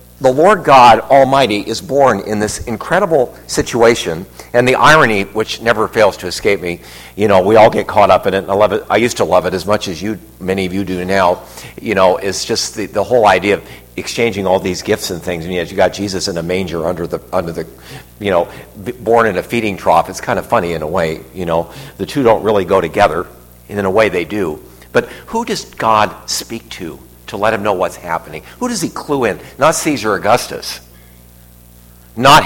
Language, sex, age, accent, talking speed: English, male, 50-69, American, 225 wpm